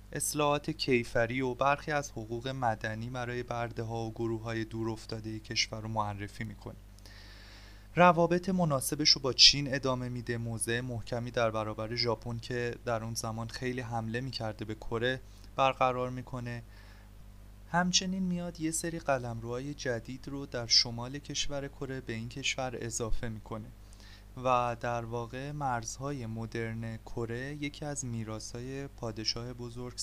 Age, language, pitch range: 20-39, Persian, 110-130 Hz